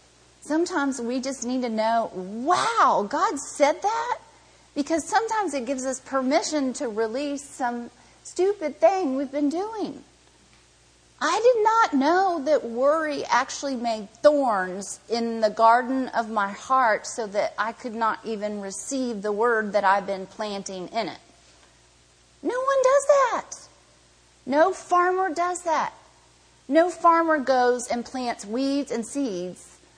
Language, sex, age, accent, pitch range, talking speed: English, female, 40-59, American, 190-290 Hz, 140 wpm